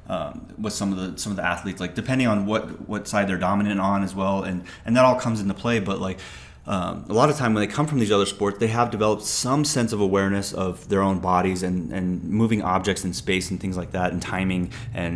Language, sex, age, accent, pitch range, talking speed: English, male, 30-49, American, 90-105 Hz, 255 wpm